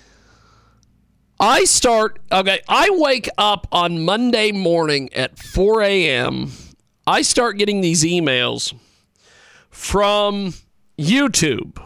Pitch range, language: 195-250 Hz, English